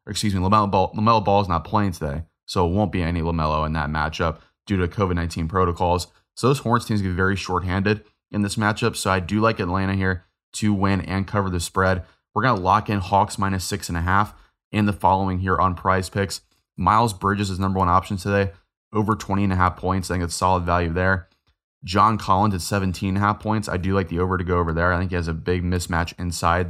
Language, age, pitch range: English, 20-39, 85-100 Hz